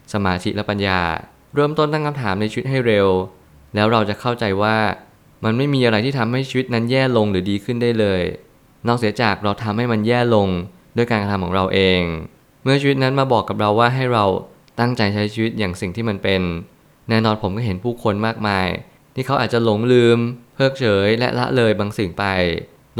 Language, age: Thai, 20-39